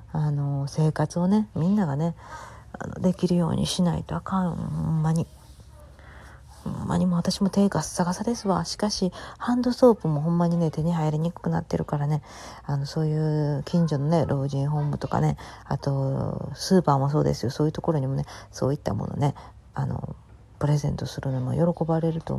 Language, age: Japanese, 40-59